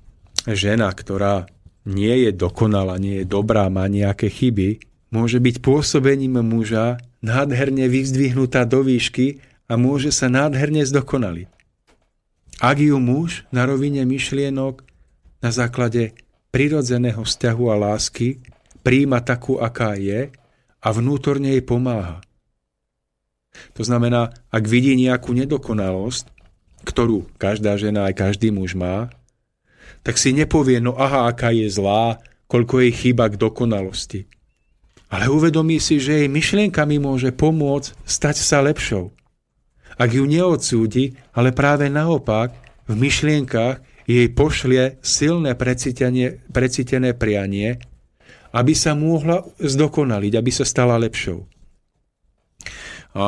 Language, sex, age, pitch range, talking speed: Slovak, male, 40-59, 110-135 Hz, 115 wpm